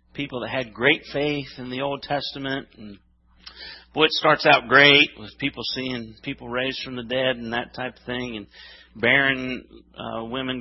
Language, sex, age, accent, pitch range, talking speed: English, male, 50-69, American, 115-185 Hz, 180 wpm